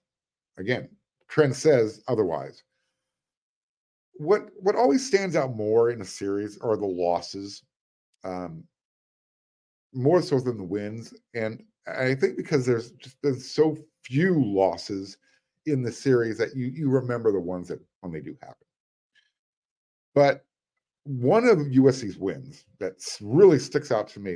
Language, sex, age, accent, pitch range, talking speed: English, male, 50-69, American, 115-150 Hz, 140 wpm